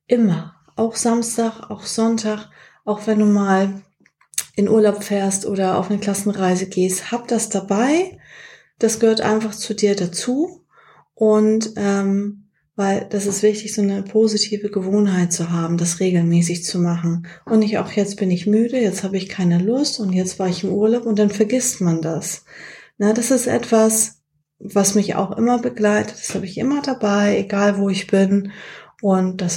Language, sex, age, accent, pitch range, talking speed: German, female, 30-49, German, 185-215 Hz, 170 wpm